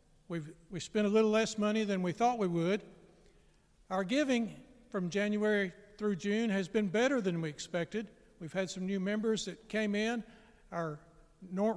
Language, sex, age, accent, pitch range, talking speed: English, male, 60-79, American, 180-215 Hz, 175 wpm